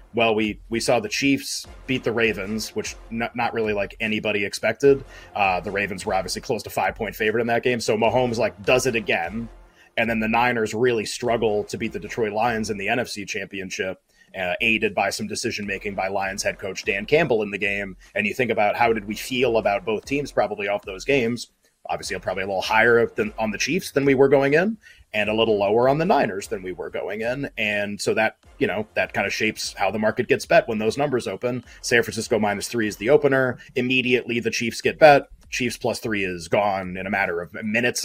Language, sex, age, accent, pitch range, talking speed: English, male, 30-49, American, 110-135 Hz, 230 wpm